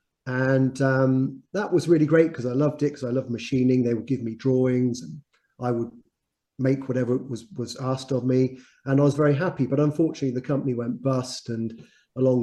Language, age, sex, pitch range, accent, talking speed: English, 30-49, male, 130-155 Hz, British, 205 wpm